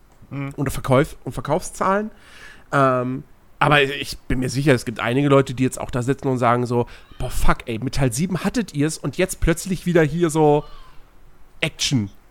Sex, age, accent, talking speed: male, 40-59, German, 180 wpm